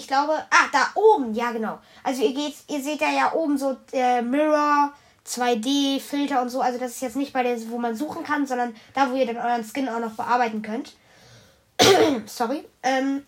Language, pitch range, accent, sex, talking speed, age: German, 225-275 Hz, German, female, 205 wpm, 10-29